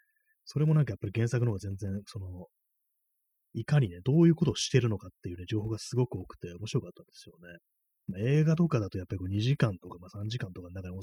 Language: Japanese